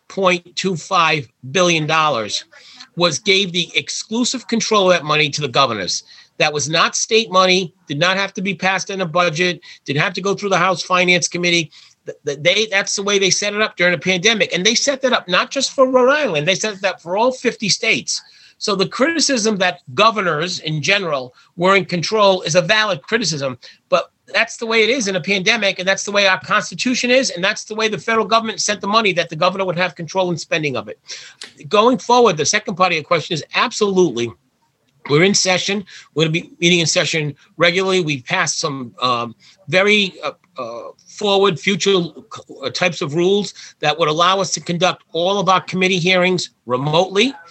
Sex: male